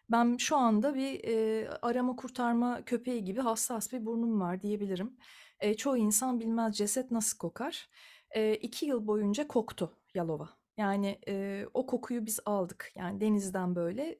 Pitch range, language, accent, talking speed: 210-265 Hz, Turkish, native, 150 wpm